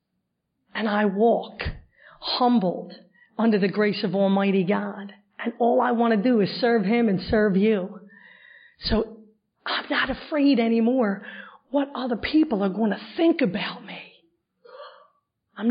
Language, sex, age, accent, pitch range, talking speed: English, female, 40-59, American, 200-235 Hz, 140 wpm